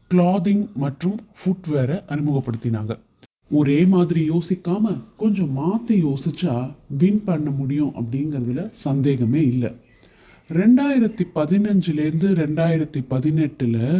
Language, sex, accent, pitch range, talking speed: Tamil, male, native, 135-185 Hz, 45 wpm